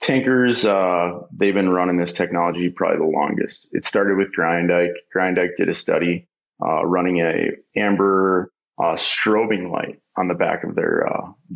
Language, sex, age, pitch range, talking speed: English, male, 30-49, 90-100 Hz, 160 wpm